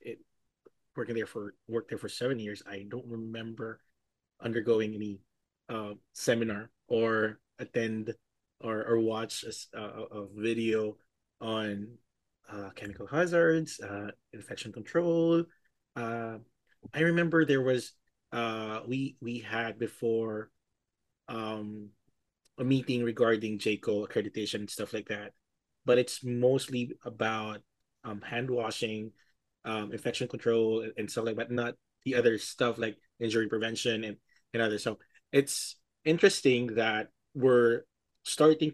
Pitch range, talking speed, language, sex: 110-120 Hz, 130 wpm, English, male